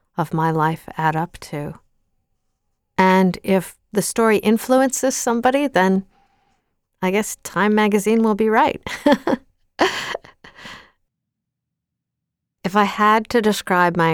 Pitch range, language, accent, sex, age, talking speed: 175-210 Hz, English, American, female, 50-69, 110 wpm